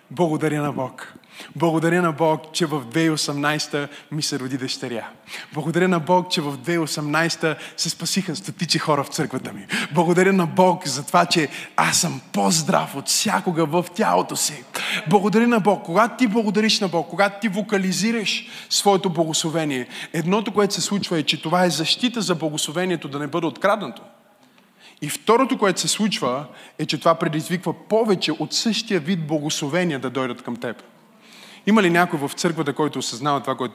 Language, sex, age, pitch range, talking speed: Bulgarian, male, 20-39, 155-210 Hz, 170 wpm